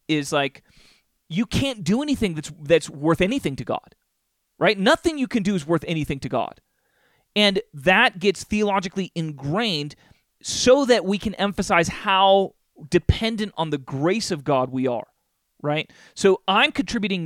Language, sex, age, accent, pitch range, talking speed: English, male, 30-49, American, 160-210 Hz, 155 wpm